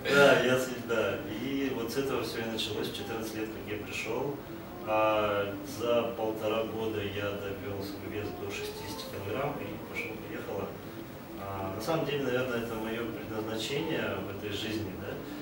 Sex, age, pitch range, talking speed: male, 30-49, 100-115 Hz, 165 wpm